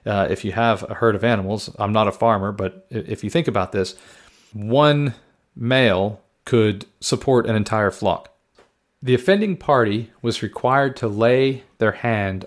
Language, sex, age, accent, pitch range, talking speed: English, male, 40-59, American, 110-145 Hz, 165 wpm